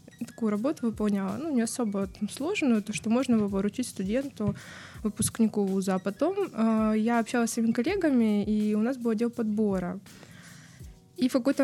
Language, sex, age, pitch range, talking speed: Russian, female, 20-39, 210-245 Hz, 160 wpm